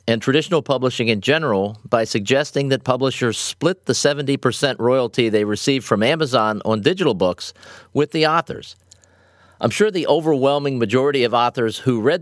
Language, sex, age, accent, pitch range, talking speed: English, male, 40-59, American, 105-140 Hz, 155 wpm